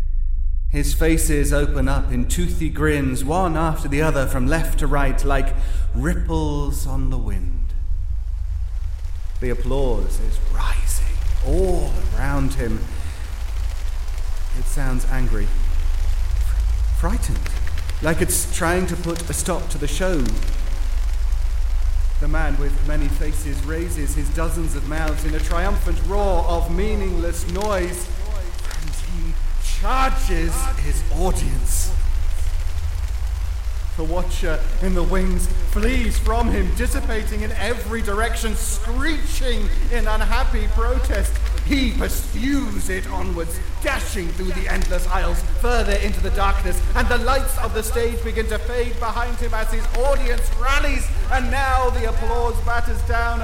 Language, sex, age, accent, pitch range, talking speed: English, male, 30-49, British, 75-95 Hz, 125 wpm